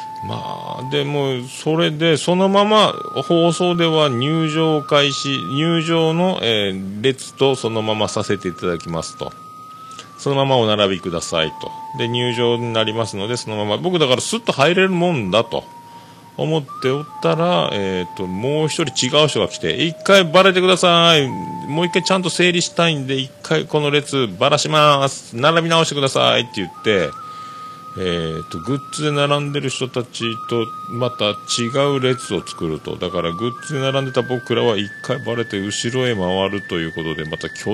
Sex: male